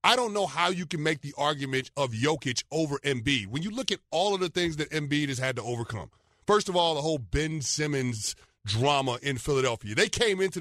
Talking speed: 225 wpm